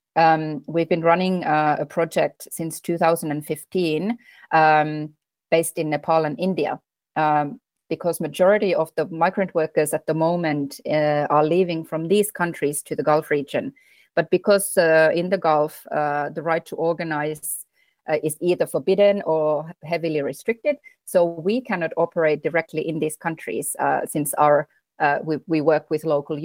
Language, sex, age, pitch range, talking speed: Finnish, female, 30-49, 155-175 Hz, 160 wpm